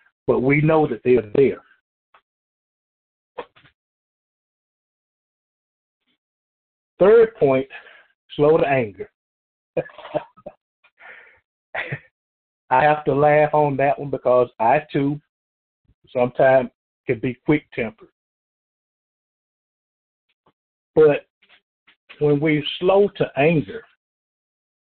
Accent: American